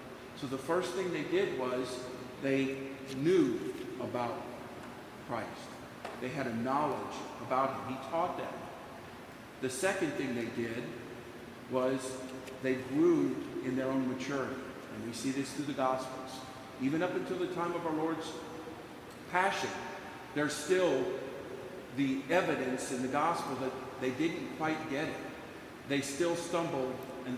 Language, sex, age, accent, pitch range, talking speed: English, male, 50-69, American, 125-160 Hz, 140 wpm